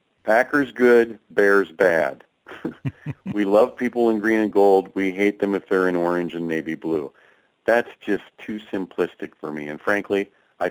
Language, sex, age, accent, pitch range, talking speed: English, male, 40-59, American, 90-120 Hz, 170 wpm